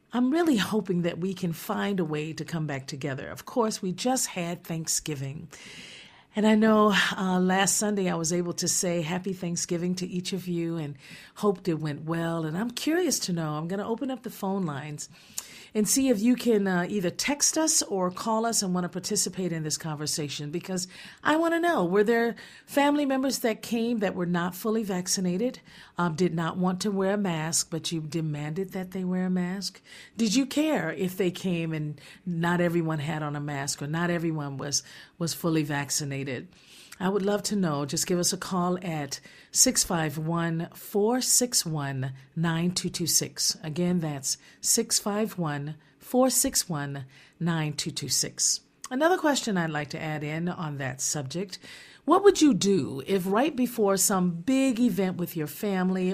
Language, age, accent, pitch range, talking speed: English, 50-69, American, 160-210 Hz, 175 wpm